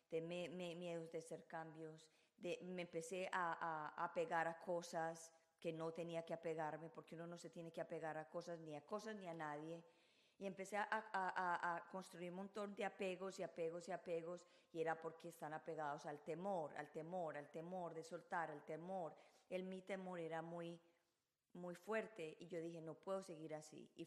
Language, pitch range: Spanish, 160-180 Hz